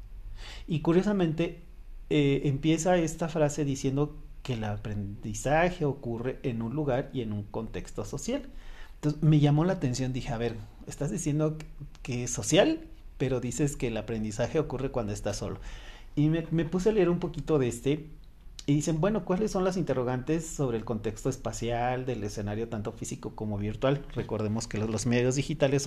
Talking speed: 170 wpm